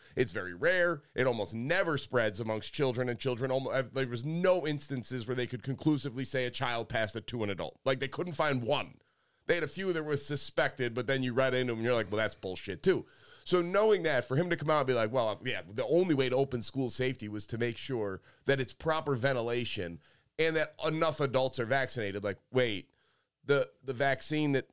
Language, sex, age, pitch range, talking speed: English, male, 30-49, 120-145 Hz, 225 wpm